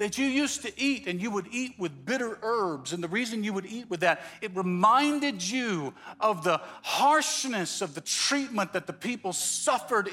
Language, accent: English, American